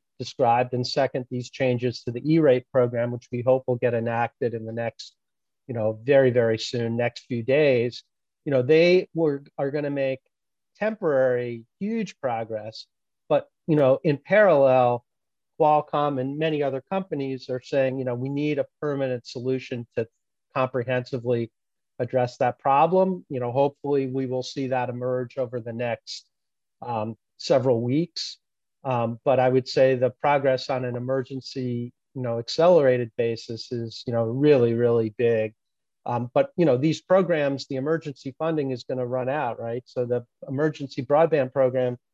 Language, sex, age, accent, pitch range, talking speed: English, male, 40-59, American, 120-140 Hz, 160 wpm